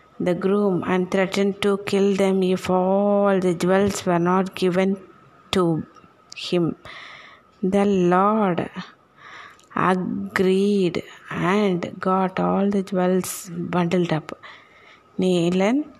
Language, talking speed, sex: Tamil, 100 wpm, female